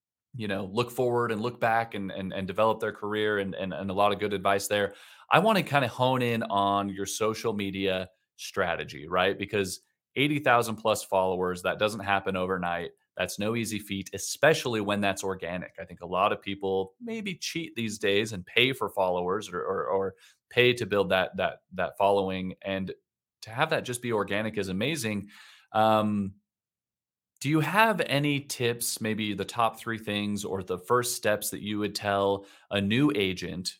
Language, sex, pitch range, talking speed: English, male, 95-115 Hz, 190 wpm